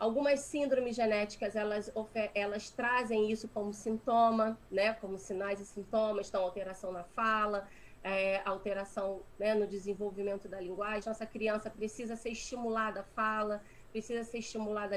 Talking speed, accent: 140 wpm, Brazilian